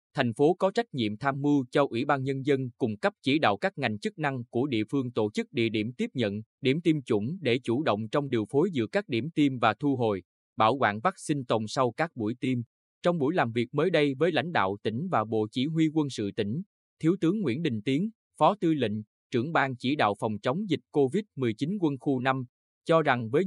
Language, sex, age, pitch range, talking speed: Vietnamese, male, 20-39, 110-155 Hz, 235 wpm